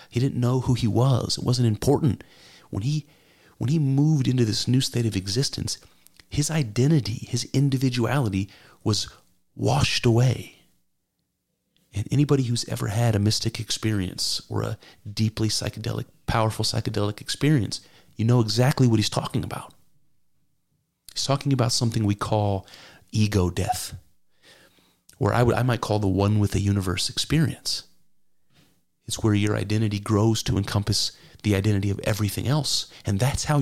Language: English